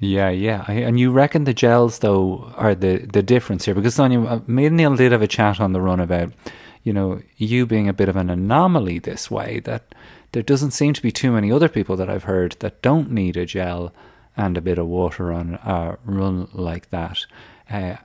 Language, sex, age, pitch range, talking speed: English, male, 30-49, 95-120 Hz, 220 wpm